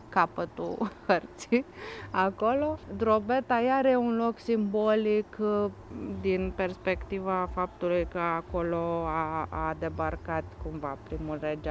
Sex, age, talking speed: female, 30-49, 105 wpm